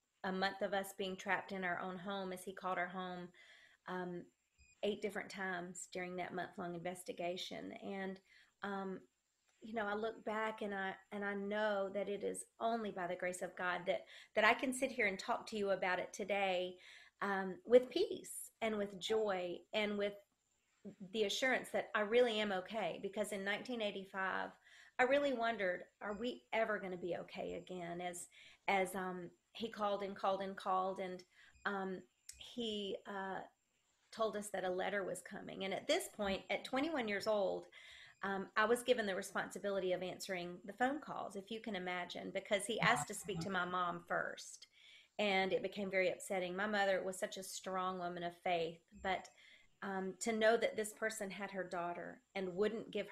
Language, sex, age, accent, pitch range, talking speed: English, female, 40-59, American, 185-215 Hz, 190 wpm